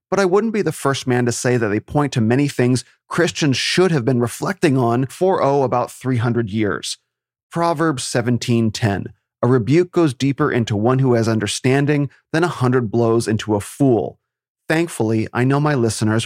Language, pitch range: English, 115-135 Hz